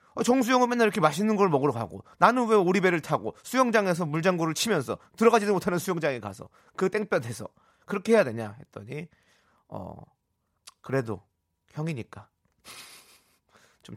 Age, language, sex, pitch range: 30-49, Korean, male, 110-180 Hz